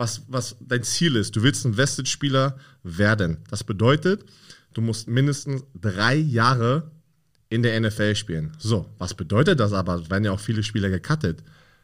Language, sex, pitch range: German, male, 110-140 Hz